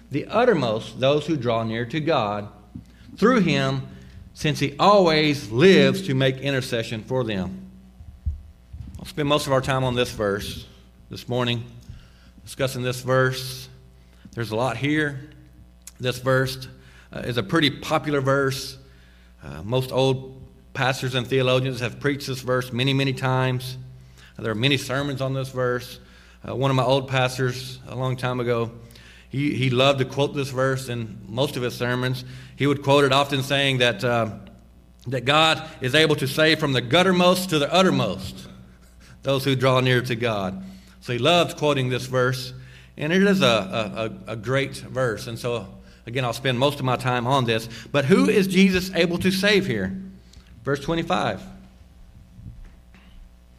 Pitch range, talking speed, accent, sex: 100-140 Hz, 165 wpm, American, male